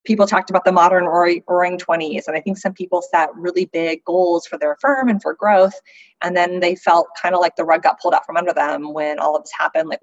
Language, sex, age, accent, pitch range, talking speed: English, female, 20-39, American, 165-195 Hz, 255 wpm